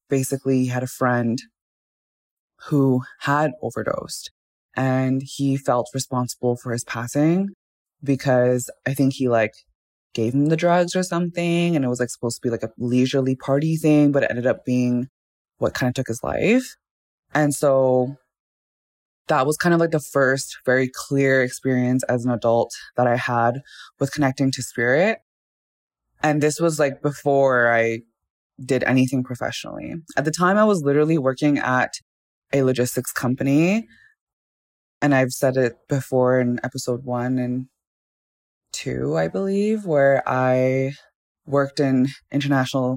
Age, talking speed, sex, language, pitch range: 20-39, 150 wpm, female, English, 125-145 Hz